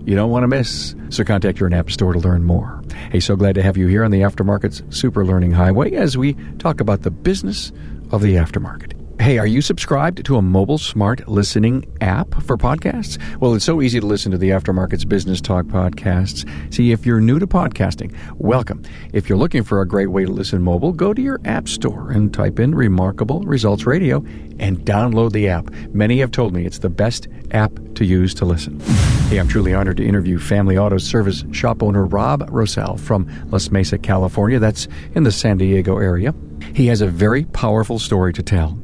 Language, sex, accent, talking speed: English, male, American, 205 wpm